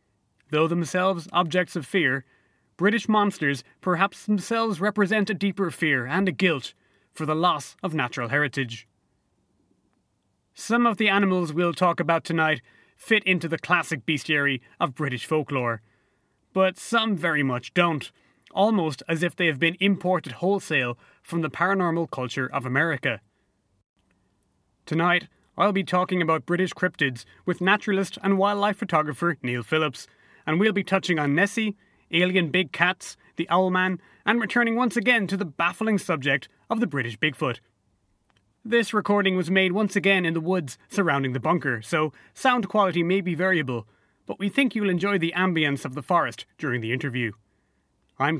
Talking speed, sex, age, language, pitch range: 155 wpm, male, 30-49, English, 140-195 Hz